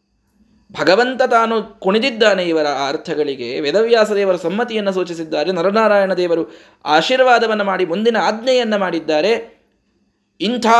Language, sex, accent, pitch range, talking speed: Kannada, male, native, 175-235 Hz, 95 wpm